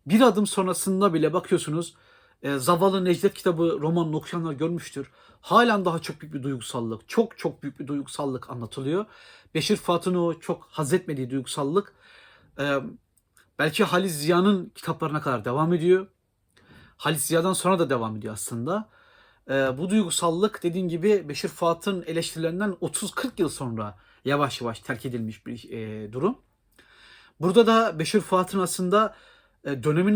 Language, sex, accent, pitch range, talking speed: Turkish, male, native, 145-195 Hz, 140 wpm